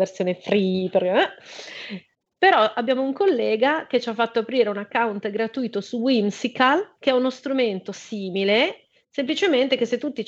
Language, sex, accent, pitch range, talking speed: Italian, female, native, 210-260 Hz, 145 wpm